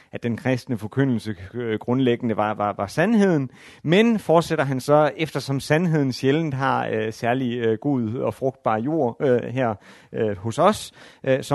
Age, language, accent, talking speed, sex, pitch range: 30-49, Danish, native, 140 wpm, male, 115-145 Hz